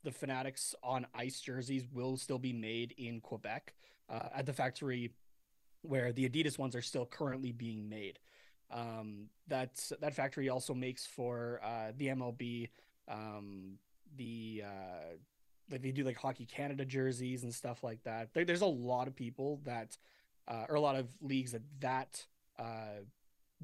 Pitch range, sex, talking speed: 120-145 Hz, male, 160 wpm